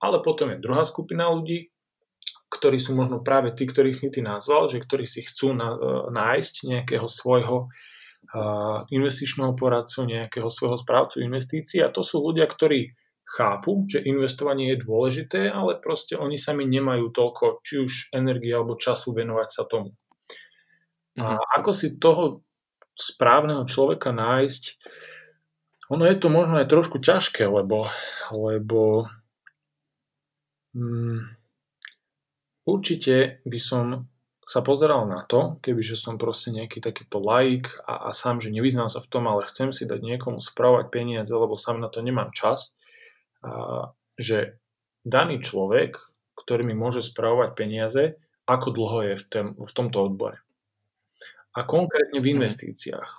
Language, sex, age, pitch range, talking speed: Slovak, male, 40-59, 115-145 Hz, 140 wpm